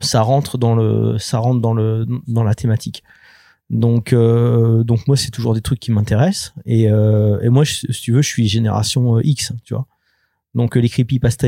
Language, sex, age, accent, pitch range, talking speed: French, male, 30-49, French, 110-130 Hz, 200 wpm